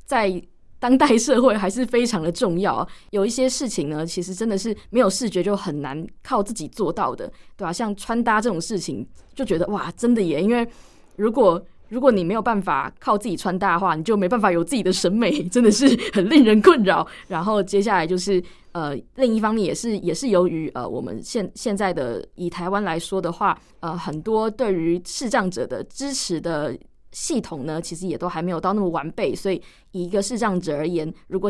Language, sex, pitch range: Chinese, female, 175-230 Hz